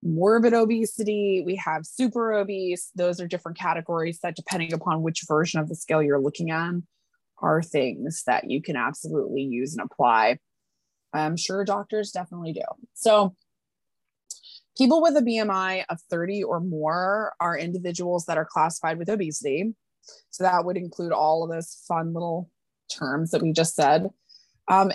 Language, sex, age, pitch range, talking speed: English, female, 20-39, 165-215 Hz, 160 wpm